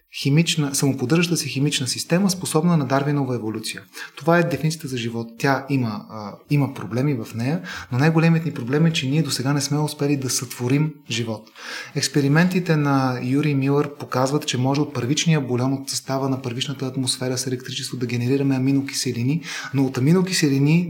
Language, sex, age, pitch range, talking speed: Bulgarian, male, 30-49, 125-150 Hz, 170 wpm